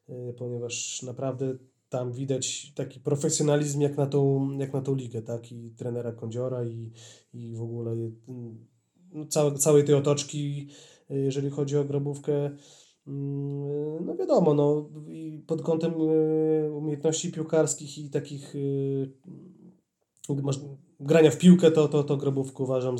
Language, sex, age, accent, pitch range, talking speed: Polish, male, 20-39, native, 130-155 Hz, 105 wpm